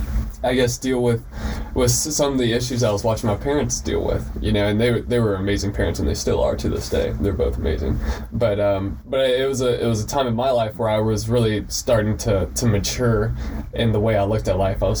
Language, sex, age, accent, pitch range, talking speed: English, male, 20-39, American, 100-125 Hz, 255 wpm